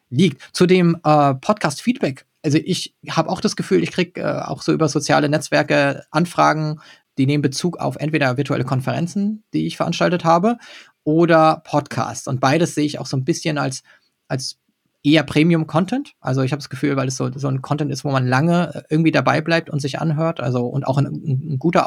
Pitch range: 135-165 Hz